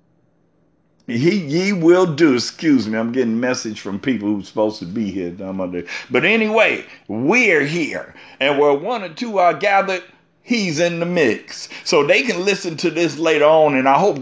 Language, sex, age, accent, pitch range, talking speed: English, male, 50-69, American, 135-205 Hz, 175 wpm